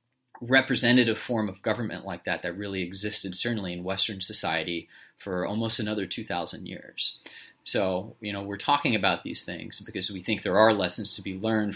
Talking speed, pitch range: 180 wpm, 100-115 Hz